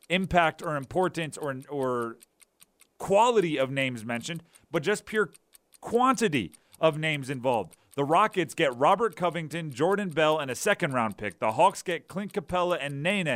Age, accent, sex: 40-59, American, male